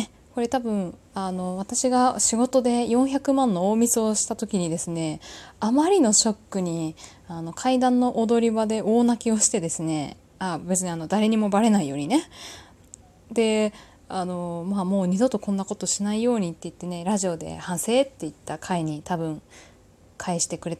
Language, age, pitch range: Japanese, 20-39, 180-250 Hz